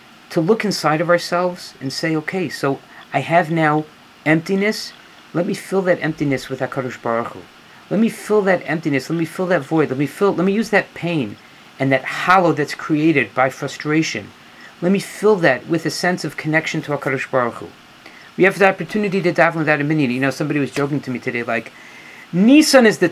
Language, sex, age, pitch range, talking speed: English, male, 40-59, 140-190 Hz, 210 wpm